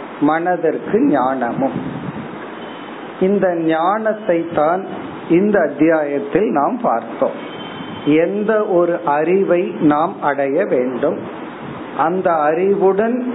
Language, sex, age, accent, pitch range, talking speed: Tamil, male, 50-69, native, 150-195 Hz, 55 wpm